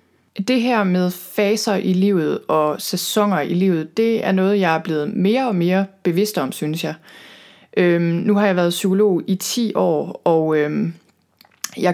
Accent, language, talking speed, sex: native, Danish, 165 wpm, female